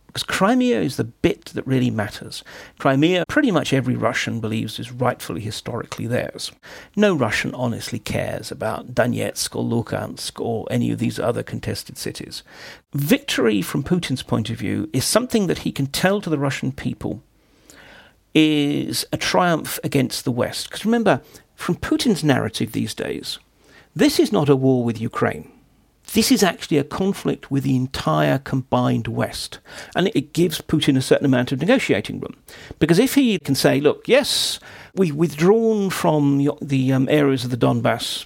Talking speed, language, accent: 165 wpm, English, British